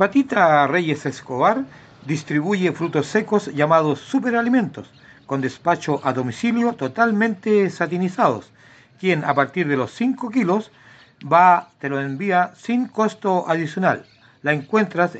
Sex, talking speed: male, 120 wpm